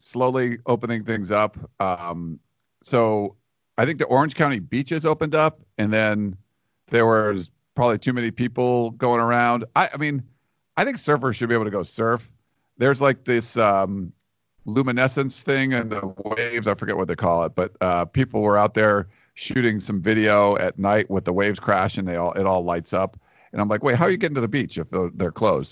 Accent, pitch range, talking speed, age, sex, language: American, 100-135 Hz, 200 wpm, 50-69, male, English